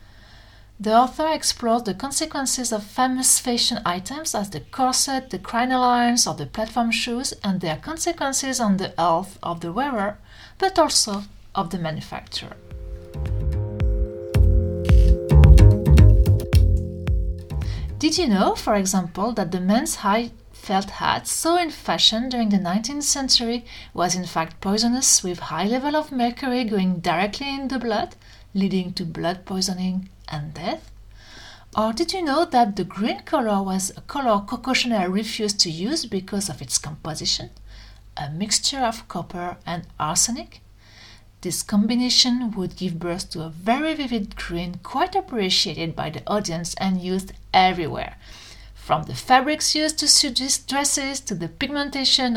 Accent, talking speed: French, 140 wpm